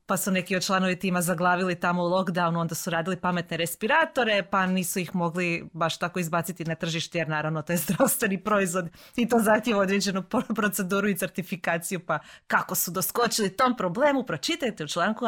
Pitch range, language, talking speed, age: 165-205 Hz, Croatian, 185 wpm, 30-49